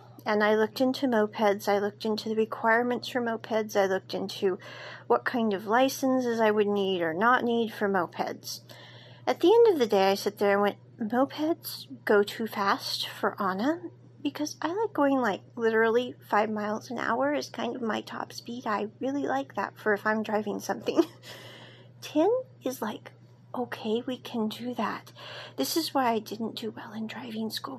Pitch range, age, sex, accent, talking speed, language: 205-265 Hz, 40-59, female, American, 190 wpm, English